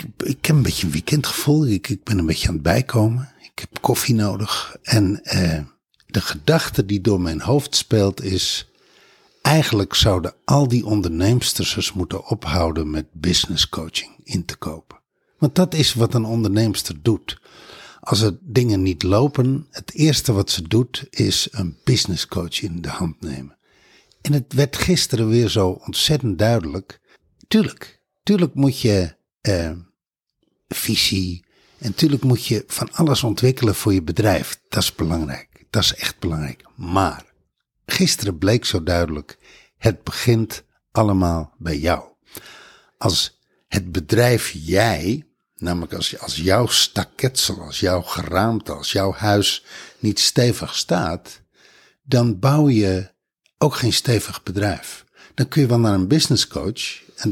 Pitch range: 90-125 Hz